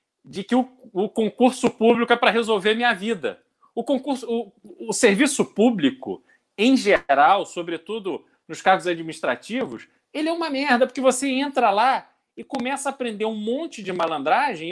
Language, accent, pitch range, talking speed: Portuguese, Brazilian, 195-260 Hz, 160 wpm